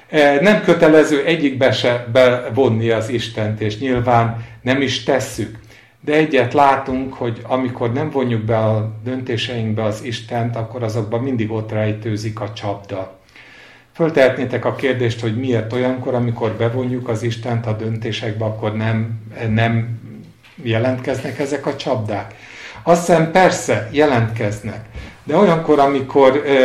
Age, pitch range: 50-69, 110-135 Hz